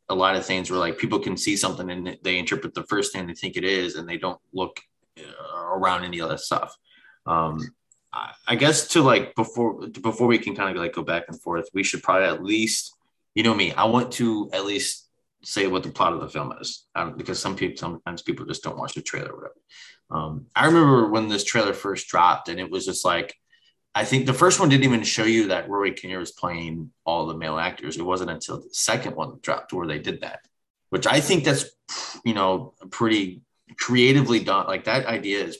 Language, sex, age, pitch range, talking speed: English, male, 20-39, 95-130 Hz, 230 wpm